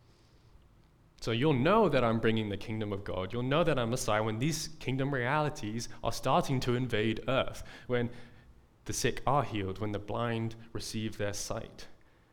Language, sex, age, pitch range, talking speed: English, male, 20-39, 110-145 Hz, 170 wpm